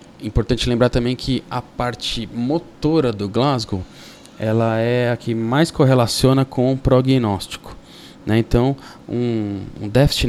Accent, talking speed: Brazilian, 135 wpm